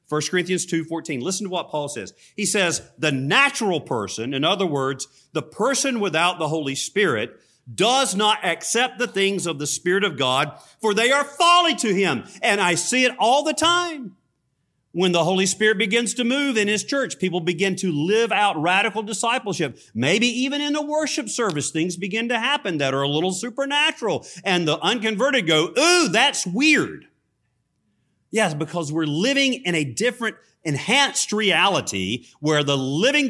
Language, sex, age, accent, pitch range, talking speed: English, male, 40-59, American, 130-215 Hz, 175 wpm